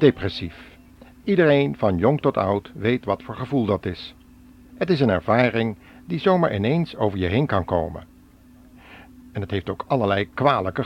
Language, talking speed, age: Dutch, 165 wpm, 60-79